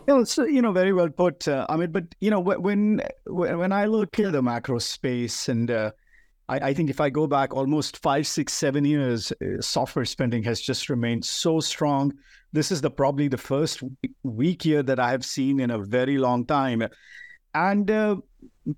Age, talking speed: 50-69, 200 wpm